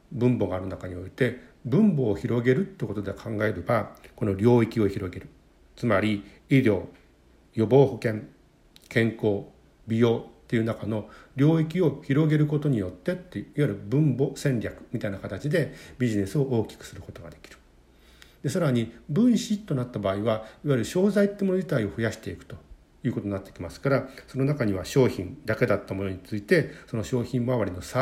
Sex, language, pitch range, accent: male, Japanese, 100-135 Hz, native